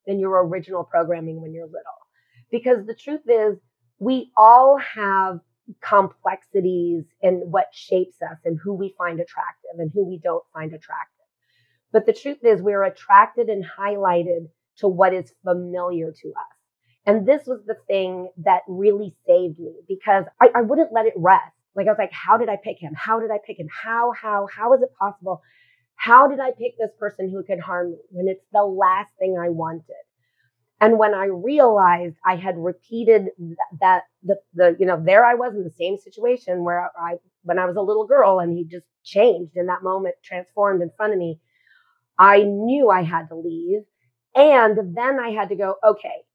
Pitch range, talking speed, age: 175-225 Hz, 195 wpm, 30-49